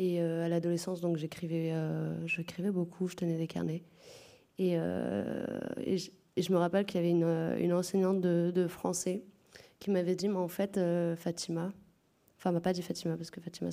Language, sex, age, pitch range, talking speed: French, female, 20-39, 170-195 Hz, 200 wpm